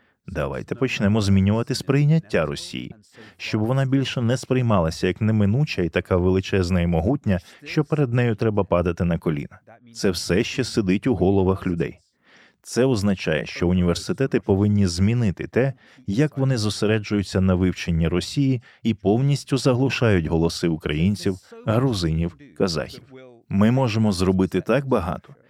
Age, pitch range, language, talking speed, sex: 20-39, 95-125 Hz, Ukrainian, 130 wpm, male